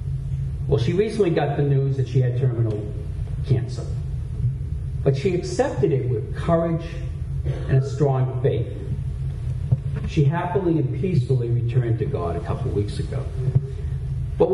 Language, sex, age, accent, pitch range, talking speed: English, male, 50-69, American, 125-145 Hz, 140 wpm